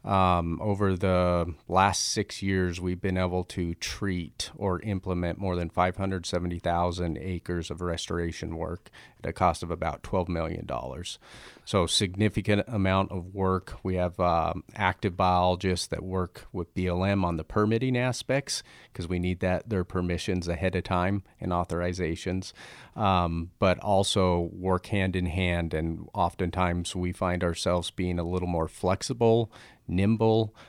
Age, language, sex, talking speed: 40-59, English, male, 145 wpm